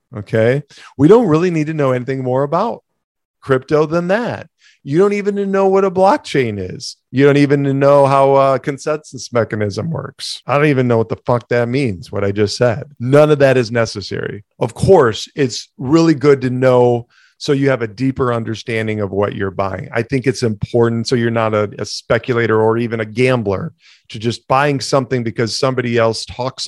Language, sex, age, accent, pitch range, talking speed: English, male, 40-59, American, 110-135 Hz, 195 wpm